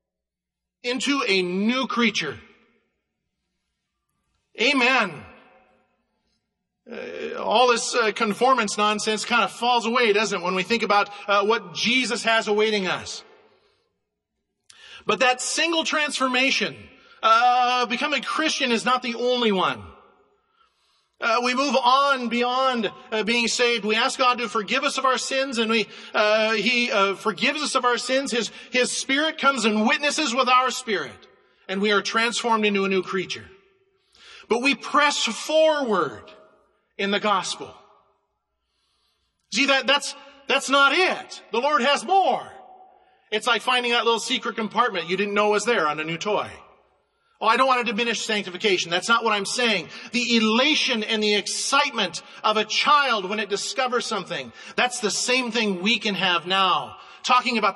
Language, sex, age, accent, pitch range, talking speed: English, male, 40-59, American, 215-275 Hz, 155 wpm